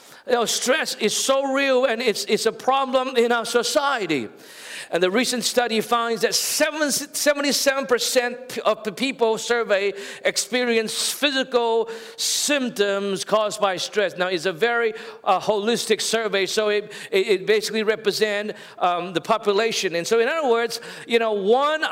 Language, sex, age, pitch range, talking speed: English, male, 50-69, 205-260 Hz, 150 wpm